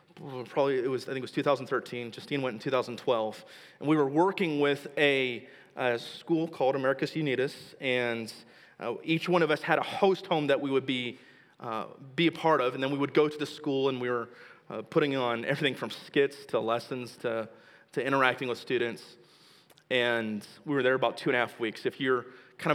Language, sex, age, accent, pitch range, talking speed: English, male, 30-49, American, 135-160 Hz, 210 wpm